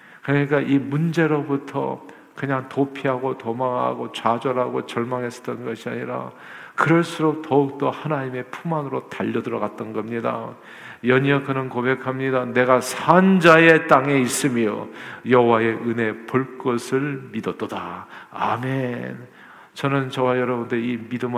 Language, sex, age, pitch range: Korean, male, 40-59, 115-135 Hz